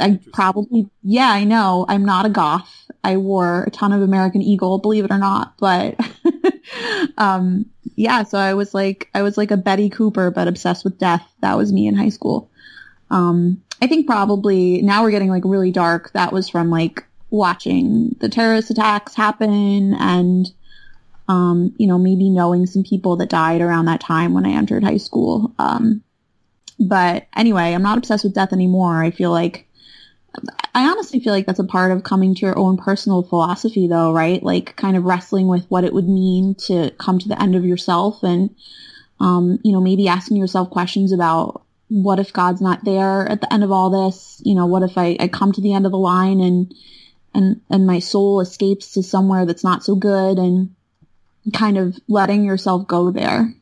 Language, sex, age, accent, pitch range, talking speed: English, female, 20-39, American, 180-205 Hz, 195 wpm